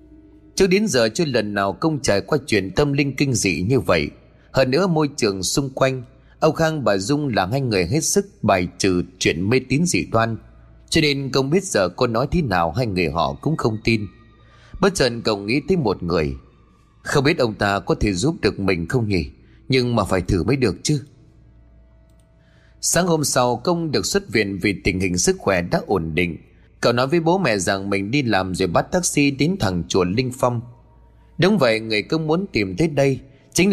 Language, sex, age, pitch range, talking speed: Vietnamese, male, 20-39, 100-150 Hz, 210 wpm